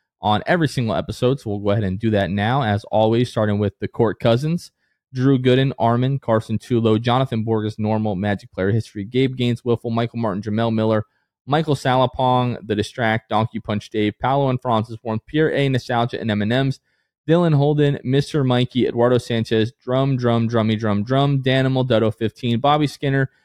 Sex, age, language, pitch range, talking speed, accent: male, 20-39, English, 110-135 Hz, 175 wpm, American